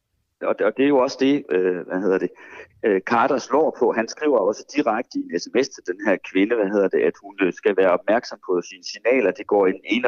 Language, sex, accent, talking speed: Danish, male, native, 245 wpm